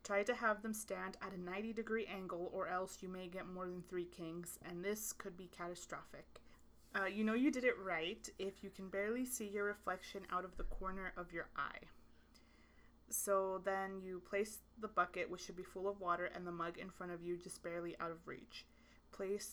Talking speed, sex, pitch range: 215 wpm, female, 175-200 Hz